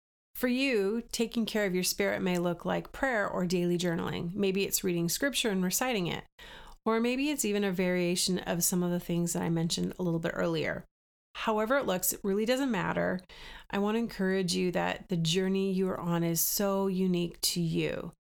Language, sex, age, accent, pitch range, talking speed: English, female, 30-49, American, 175-200 Hz, 205 wpm